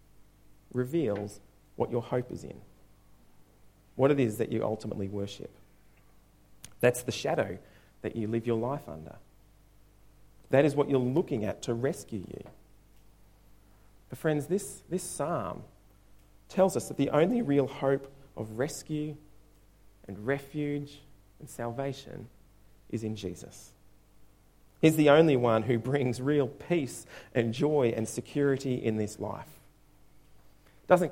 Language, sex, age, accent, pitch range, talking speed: English, male, 40-59, Australian, 100-140 Hz, 130 wpm